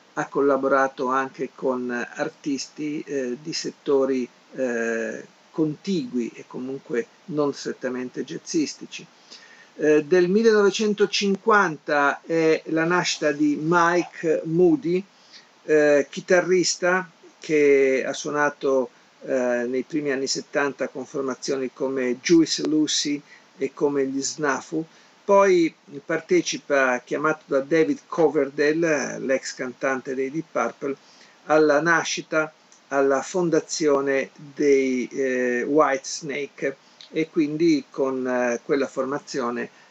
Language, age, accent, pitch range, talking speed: Italian, 50-69, native, 135-170 Hz, 100 wpm